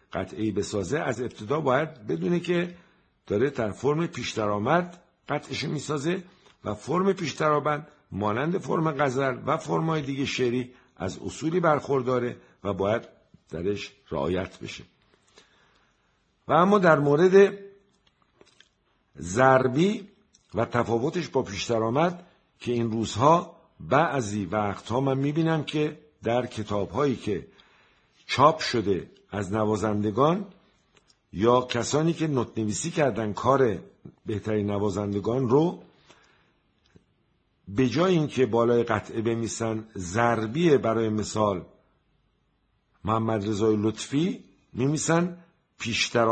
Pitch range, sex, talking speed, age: 110-160 Hz, male, 100 wpm, 50-69